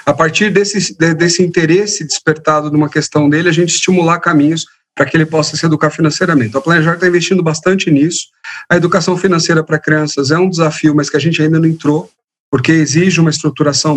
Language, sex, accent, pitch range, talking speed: Portuguese, male, Brazilian, 145-175 Hz, 200 wpm